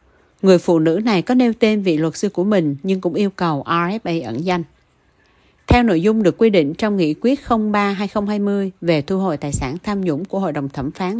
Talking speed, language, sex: 220 wpm, Vietnamese, female